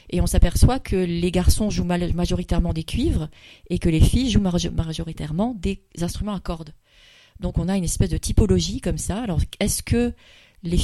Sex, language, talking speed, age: female, French, 185 wpm, 30-49